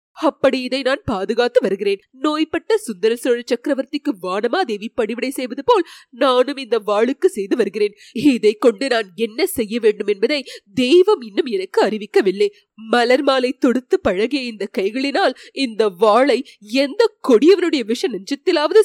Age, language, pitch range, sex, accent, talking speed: 30-49, Tamil, 235-335 Hz, female, native, 130 wpm